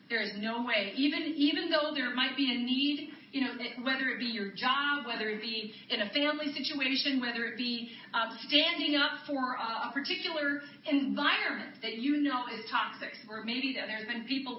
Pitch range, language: 210-275 Hz, English